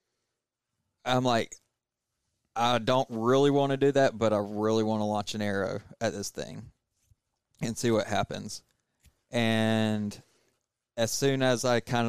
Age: 30-49